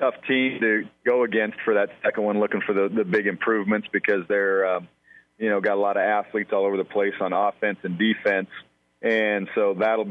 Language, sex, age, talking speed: English, male, 40-59, 215 wpm